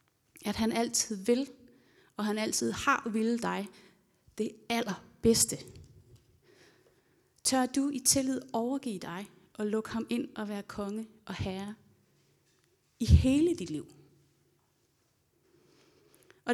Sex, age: female, 30-49